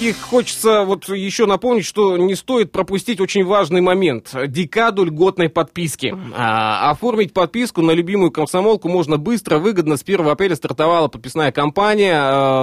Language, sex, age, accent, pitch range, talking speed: Russian, male, 20-39, native, 140-185 Hz, 135 wpm